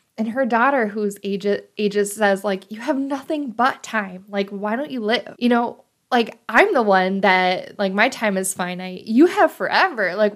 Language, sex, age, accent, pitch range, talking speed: English, female, 10-29, American, 200-275 Hz, 190 wpm